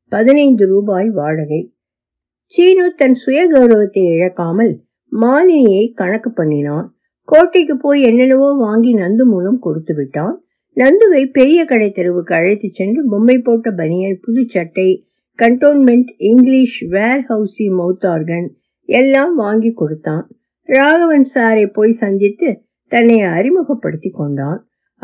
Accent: native